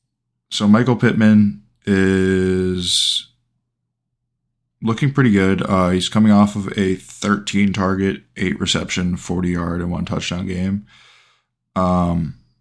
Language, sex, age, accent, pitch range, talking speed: English, male, 20-39, American, 90-120 Hz, 95 wpm